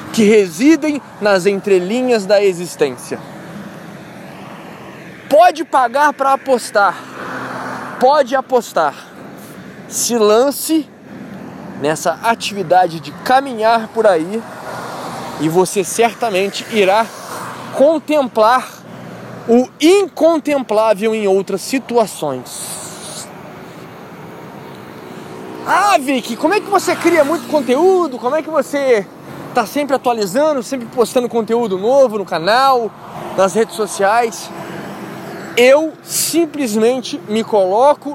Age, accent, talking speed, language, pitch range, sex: 20-39, Brazilian, 95 wpm, Portuguese, 200-280 Hz, male